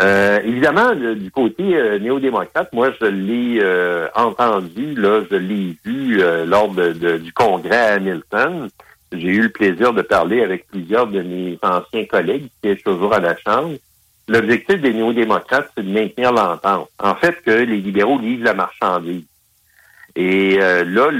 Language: French